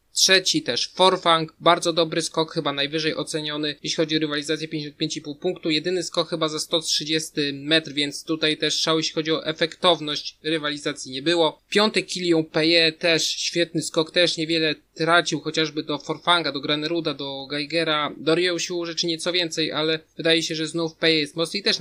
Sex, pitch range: male, 155-180 Hz